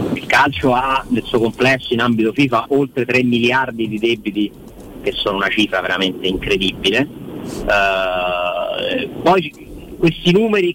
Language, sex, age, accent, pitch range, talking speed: Italian, male, 40-59, native, 110-135 Hz, 140 wpm